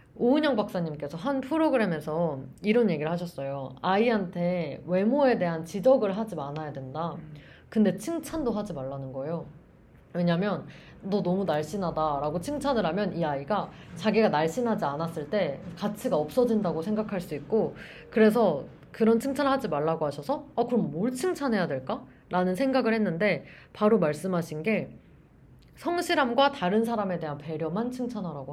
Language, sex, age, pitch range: Korean, female, 20-39, 160-230 Hz